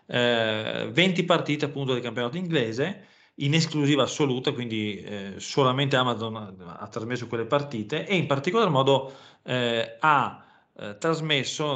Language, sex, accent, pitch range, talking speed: Italian, male, native, 110-140 Hz, 110 wpm